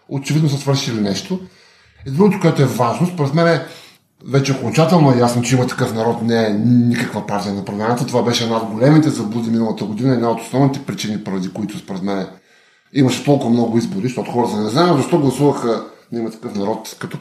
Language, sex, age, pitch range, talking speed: Bulgarian, male, 20-39, 120-155 Hz, 200 wpm